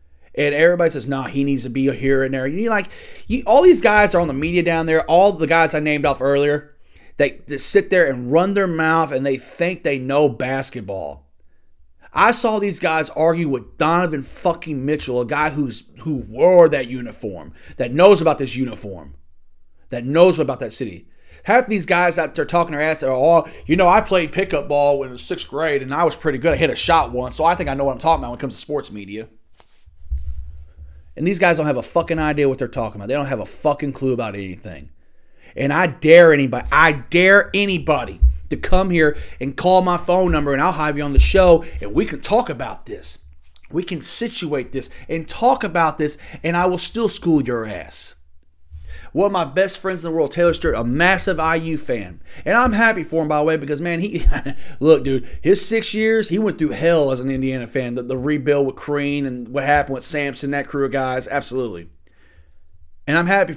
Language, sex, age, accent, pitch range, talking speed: English, male, 30-49, American, 125-170 Hz, 225 wpm